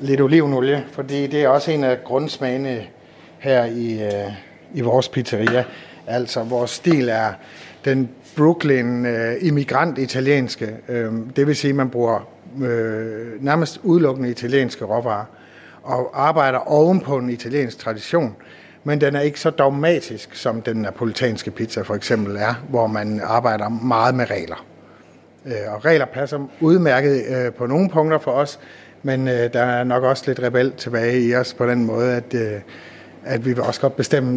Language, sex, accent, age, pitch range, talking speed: Danish, male, native, 60-79, 115-145 Hz, 160 wpm